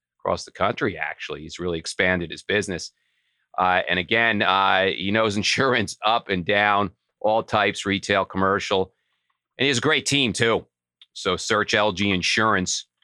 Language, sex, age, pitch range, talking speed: English, male, 40-59, 90-115 Hz, 155 wpm